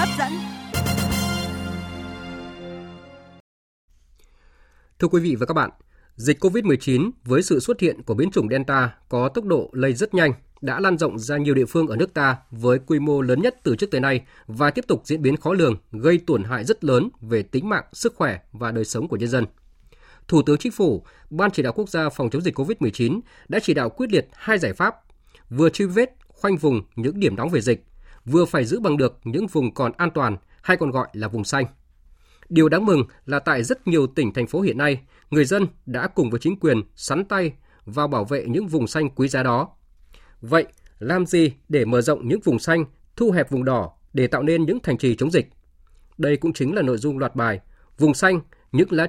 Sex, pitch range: male, 110-160 Hz